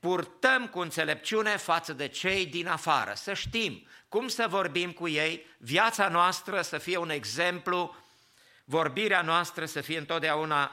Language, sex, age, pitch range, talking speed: English, male, 50-69, 145-190 Hz, 145 wpm